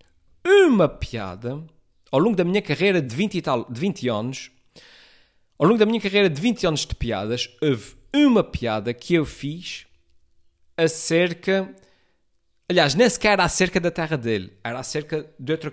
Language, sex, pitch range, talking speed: Portuguese, male, 115-185 Hz, 160 wpm